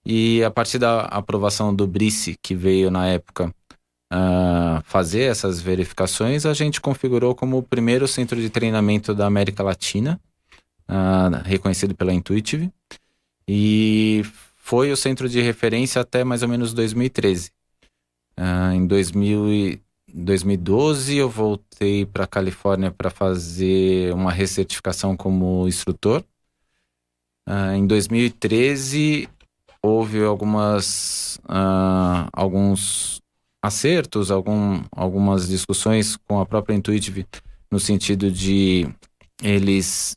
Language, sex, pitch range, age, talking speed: Portuguese, male, 95-110 Hz, 20-39, 105 wpm